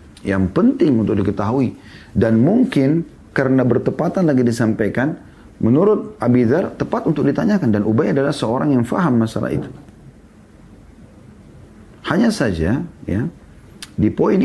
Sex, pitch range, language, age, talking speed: male, 95-120 Hz, Indonesian, 30-49, 115 wpm